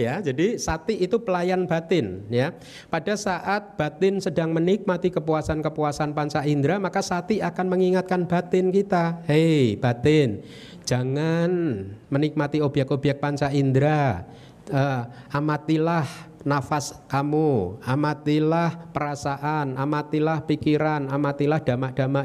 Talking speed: 100 wpm